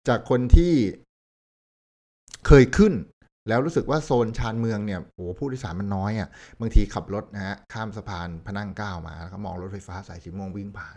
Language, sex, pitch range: Thai, male, 90-115 Hz